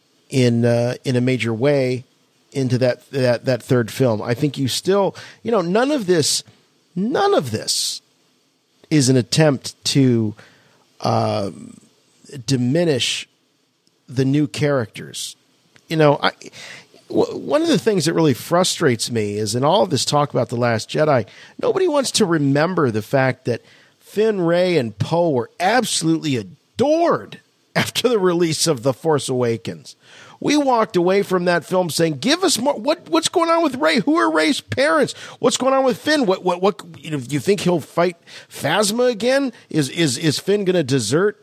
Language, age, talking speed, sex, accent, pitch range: English, 50-69, 175 wpm, male, American, 130-215 Hz